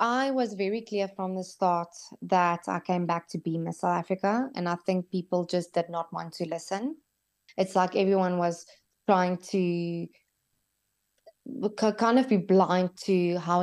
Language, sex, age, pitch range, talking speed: English, female, 20-39, 170-195 Hz, 165 wpm